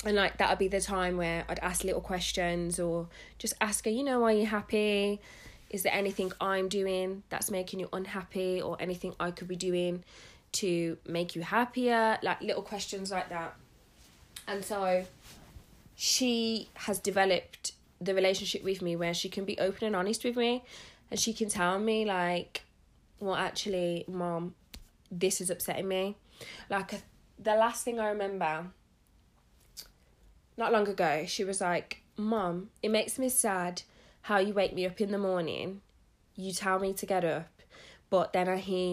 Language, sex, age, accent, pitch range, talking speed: English, female, 20-39, British, 175-210 Hz, 170 wpm